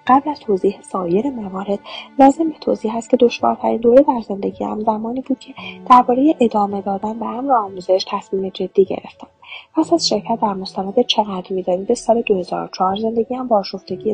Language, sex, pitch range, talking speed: Persian, female, 185-245 Hz, 175 wpm